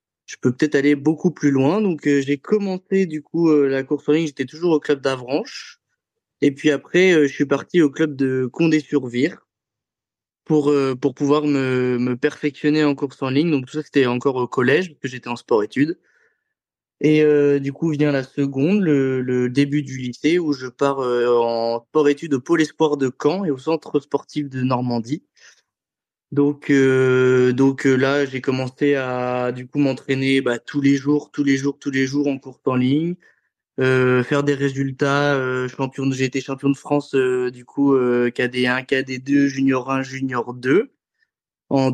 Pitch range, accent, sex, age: 125-145 Hz, French, male, 20-39